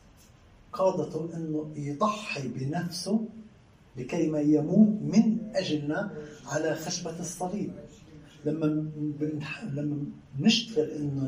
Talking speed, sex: 85 wpm, male